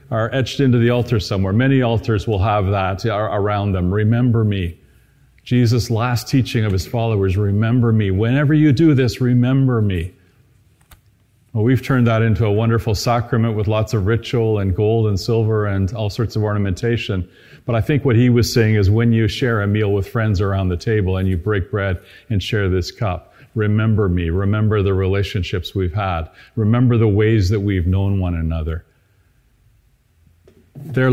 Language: English